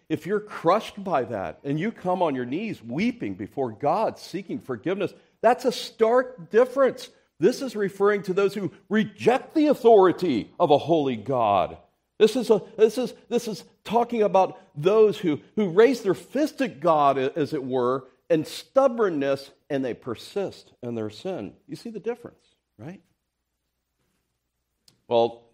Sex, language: male, English